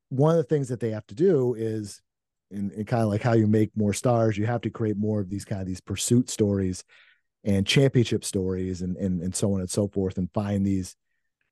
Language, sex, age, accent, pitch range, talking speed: English, male, 40-59, American, 100-125 Hz, 240 wpm